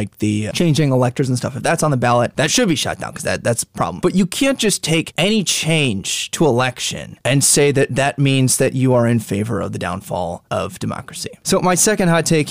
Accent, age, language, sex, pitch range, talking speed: American, 20-39, English, male, 115-155 Hz, 240 wpm